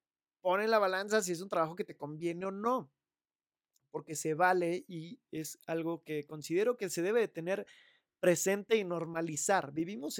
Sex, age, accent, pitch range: male, 30-49, Mexican, 155-200 Hz